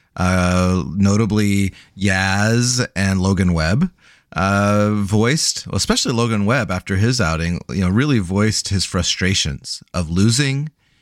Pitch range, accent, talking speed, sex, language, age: 100-145 Hz, American, 120 wpm, male, English, 30-49